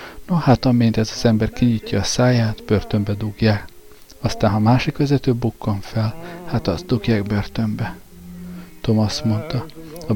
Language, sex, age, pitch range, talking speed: Hungarian, male, 50-69, 105-125 Hz, 150 wpm